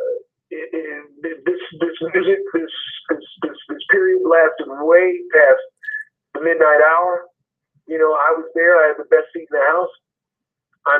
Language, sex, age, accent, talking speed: English, male, 50-69, American, 165 wpm